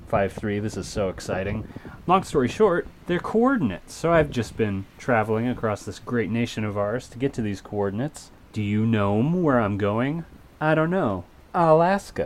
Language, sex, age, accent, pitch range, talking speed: English, male, 30-49, American, 95-125 Hz, 170 wpm